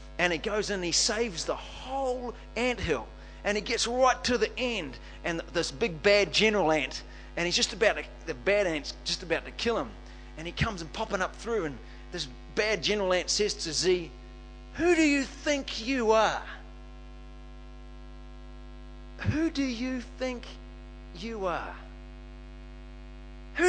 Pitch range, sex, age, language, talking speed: 190-250 Hz, male, 40-59, English, 160 wpm